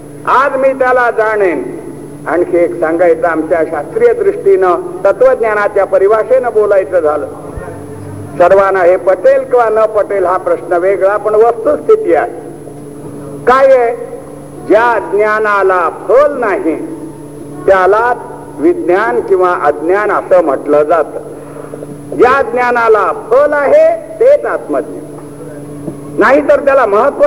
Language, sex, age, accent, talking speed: Marathi, male, 60-79, native, 110 wpm